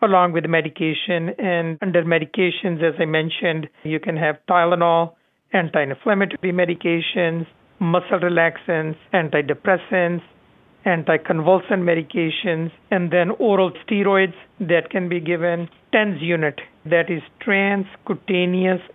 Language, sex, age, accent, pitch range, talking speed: English, male, 50-69, Indian, 170-195 Hz, 105 wpm